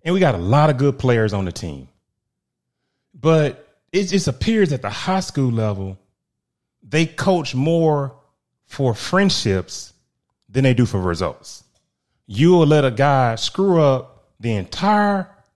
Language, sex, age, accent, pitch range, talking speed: English, male, 30-49, American, 110-170 Hz, 145 wpm